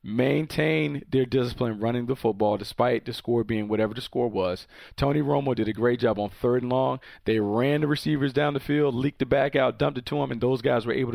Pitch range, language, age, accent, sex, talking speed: 120-145 Hz, English, 40-59, American, male, 235 wpm